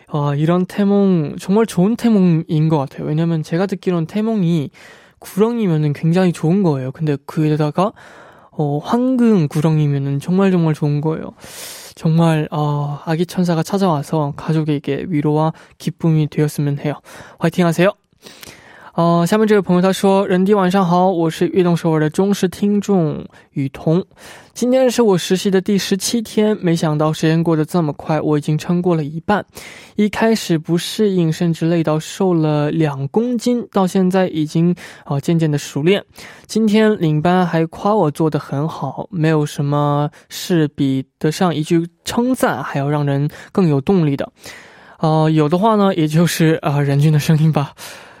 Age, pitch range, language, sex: 20-39, 155-195 Hz, Korean, male